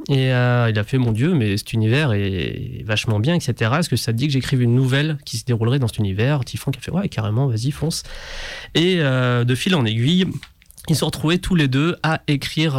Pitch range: 120-145 Hz